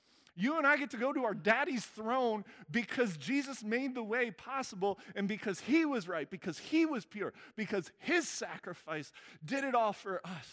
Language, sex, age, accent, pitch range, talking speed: English, male, 40-59, American, 130-205 Hz, 190 wpm